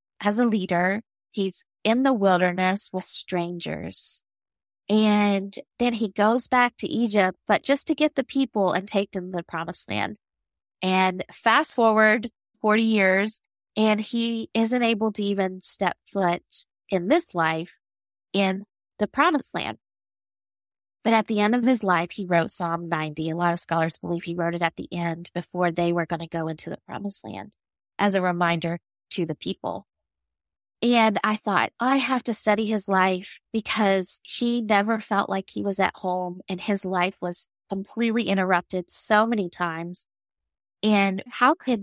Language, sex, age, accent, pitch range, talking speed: English, female, 20-39, American, 175-215 Hz, 170 wpm